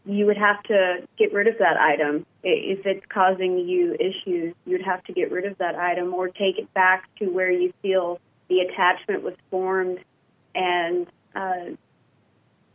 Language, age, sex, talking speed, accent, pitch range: English, 30-49, female, 170 wpm, American, 185-220 Hz